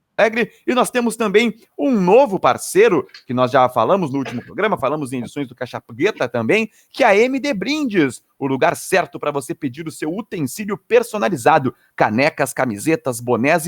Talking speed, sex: 165 wpm, male